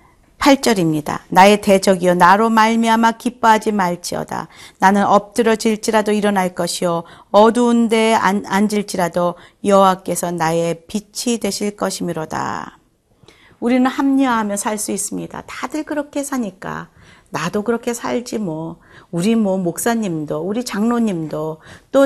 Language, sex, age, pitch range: Korean, female, 40-59, 175-230 Hz